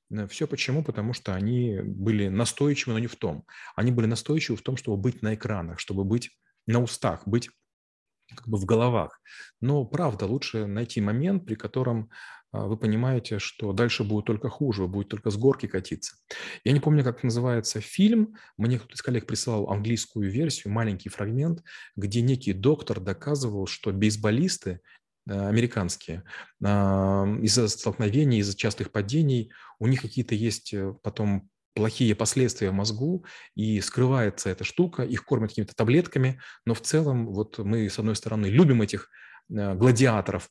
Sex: male